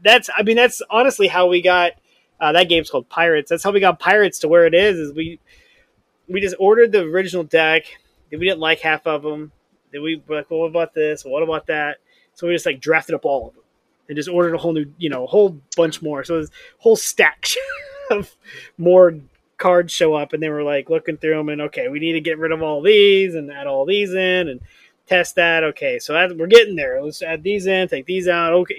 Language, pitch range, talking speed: English, 140-190 Hz, 245 wpm